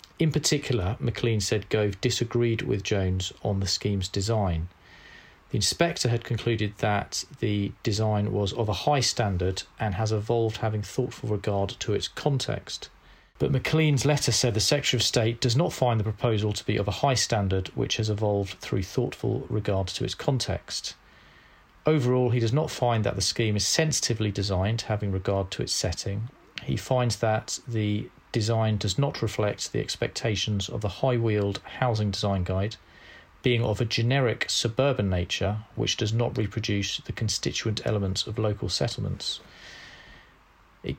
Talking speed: 160 wpm